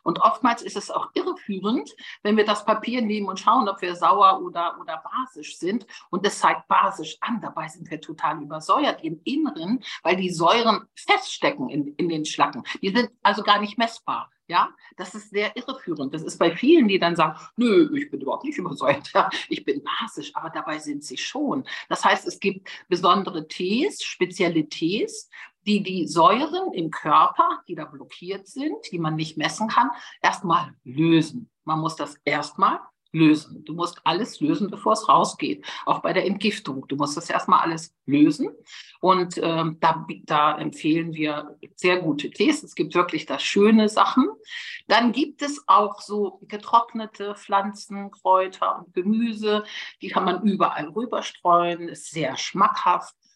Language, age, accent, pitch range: German, 50-69, German, 170-265 Hz